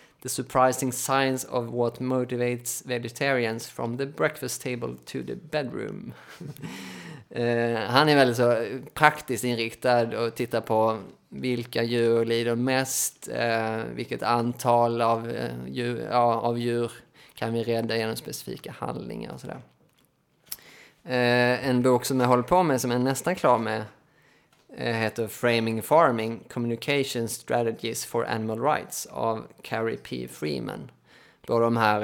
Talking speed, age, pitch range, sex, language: 135 wpm, 20-39, 115-125 Hz, male, Swedish